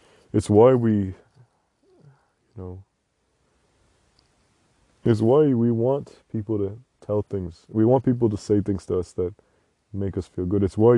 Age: 20-39